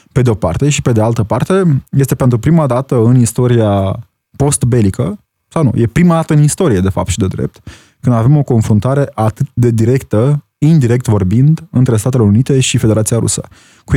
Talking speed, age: 190 wpm, 20-39